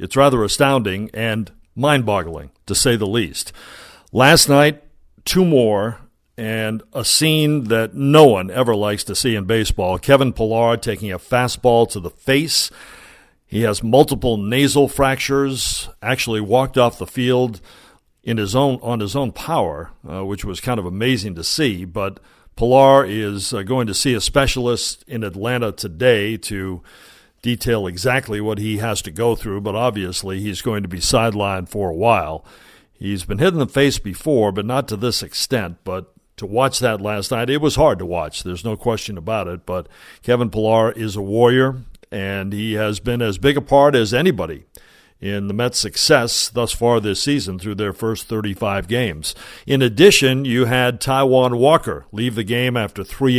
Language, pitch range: English, 105-130 Hz